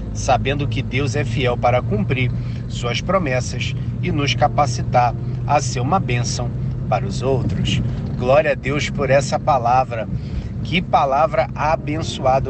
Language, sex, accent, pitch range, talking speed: Portuguese, male, Brazilian, 120-145 Hz, 135 wpm